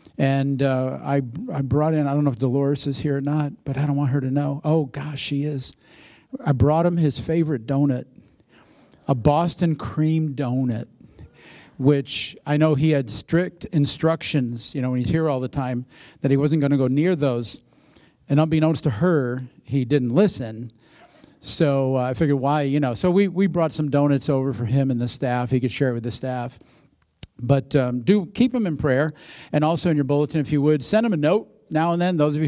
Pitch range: 130-155 Hz